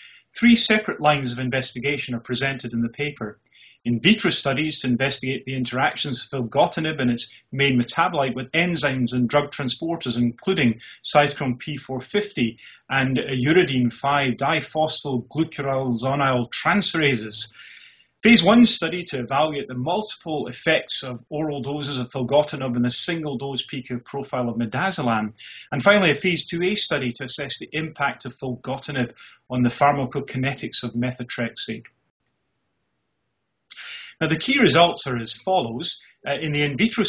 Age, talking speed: 30-49, 140 wpm